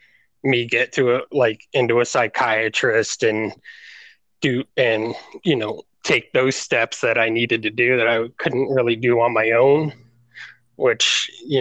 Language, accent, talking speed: English, American, 155 wpm